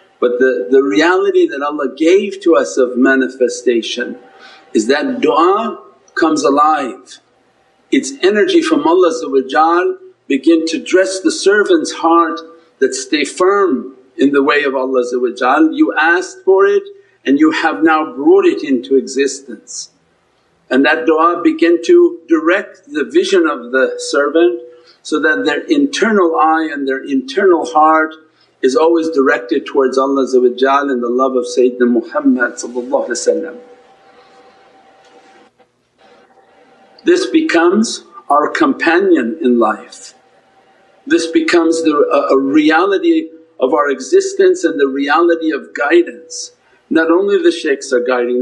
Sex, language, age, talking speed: male, English, 50-69, 130 wpm